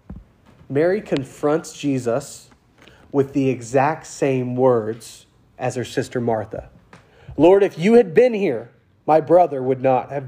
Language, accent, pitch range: English, American, 135-185 Hz